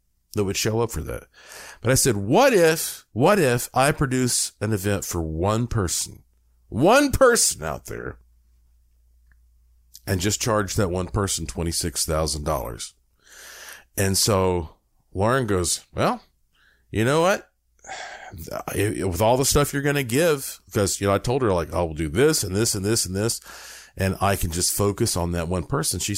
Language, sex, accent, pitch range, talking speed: English, male, American, 85-120 Hz, 165 wpm